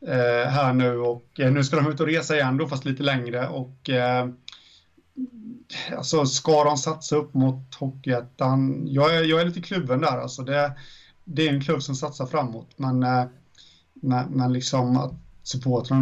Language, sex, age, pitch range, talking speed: Swedish, male, 30-49, 125-145 Hz, 165 wpm